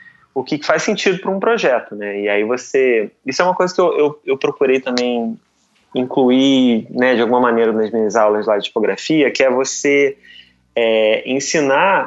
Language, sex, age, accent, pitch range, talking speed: Portuguese, male, 20-39, Brazilian, 120-145 Hz, 185 wpm